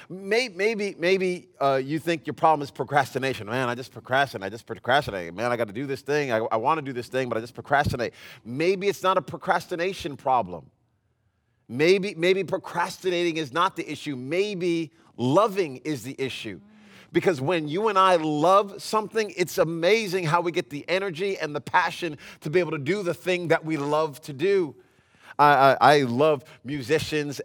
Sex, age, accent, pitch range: male, 30-49, American, 145-185 Hz